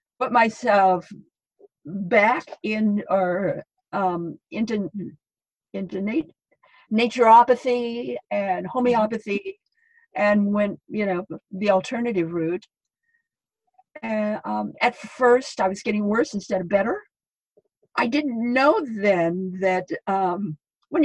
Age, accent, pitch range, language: 50-69, American, 190-250 Hz, English